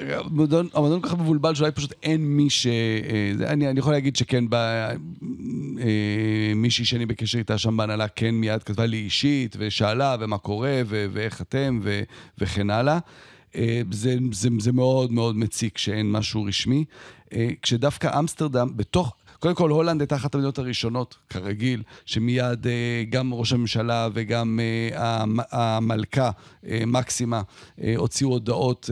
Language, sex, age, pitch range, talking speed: Hebrew, male, 40-59, 105-130 Hz, 140 wpm